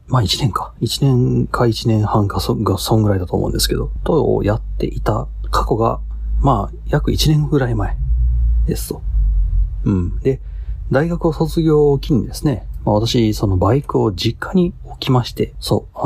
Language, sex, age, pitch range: Japanese, male, 40-59, 95-130 Hz